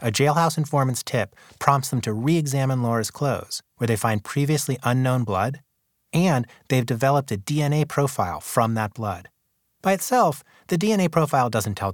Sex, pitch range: male, 110-150 Hz